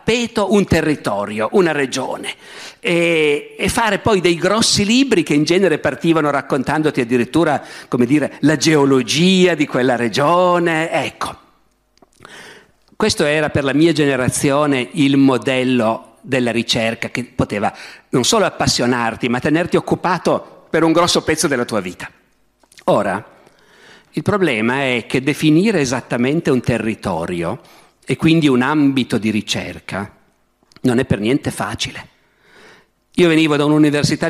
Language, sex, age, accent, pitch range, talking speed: Italian, male, 50-69, native, 125-165 Hz, 130 wpm